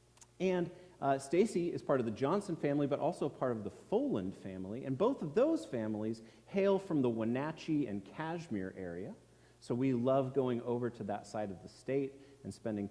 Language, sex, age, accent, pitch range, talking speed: English, male, 30-49, American, 115-170 Hz, 190 wpm